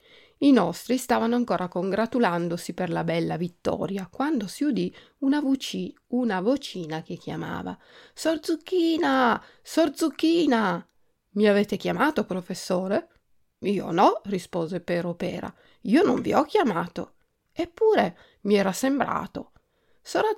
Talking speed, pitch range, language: 120 wpm, 195-320 Hz, Italian